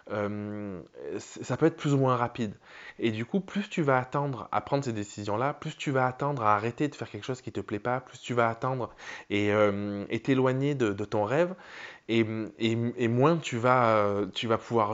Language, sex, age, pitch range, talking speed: French, male, 20-39, 105-130 Hz, 215 wpm